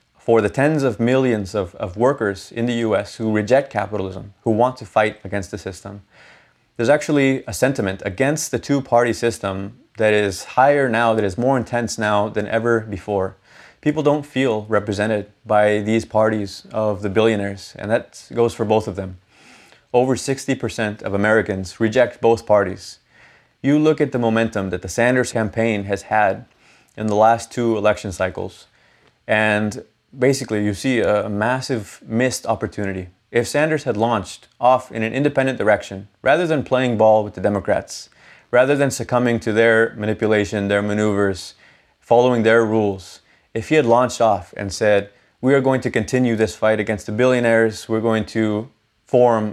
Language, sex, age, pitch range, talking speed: English, male, 30-49, 105-125 Hz, 165 wpm